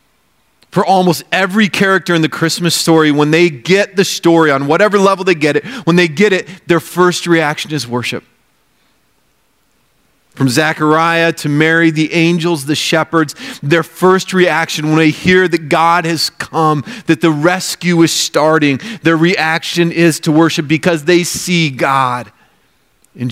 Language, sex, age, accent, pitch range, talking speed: English, male, 40-59, American, 120-165 Hz, 155 wpm